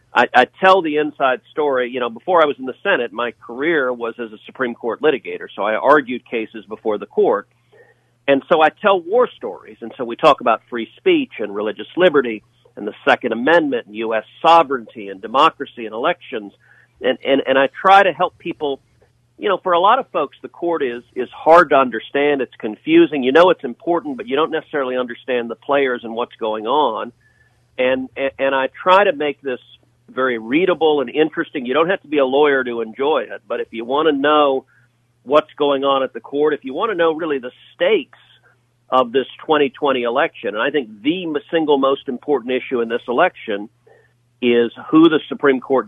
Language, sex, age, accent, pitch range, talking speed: English, male, 50-69, American, 120-155 Hz, 205 wpm